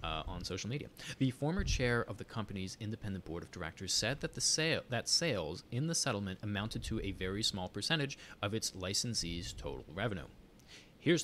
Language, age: English, 30-49